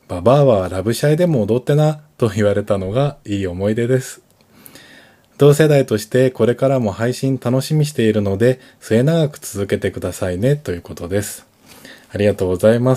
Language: Japanese